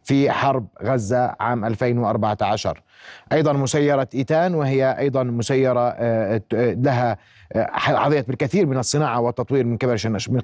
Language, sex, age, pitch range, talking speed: Arabic, male, 30-49, 115-145 Hz, 115 wpm